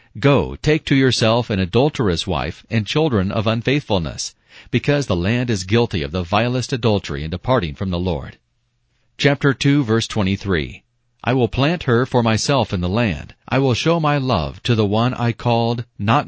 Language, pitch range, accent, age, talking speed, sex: English, 100-125 Hz, American, 40-59, 180 wpm, male